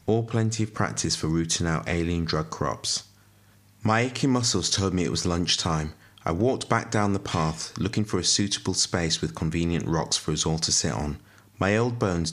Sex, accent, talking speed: male, British, 200 wpm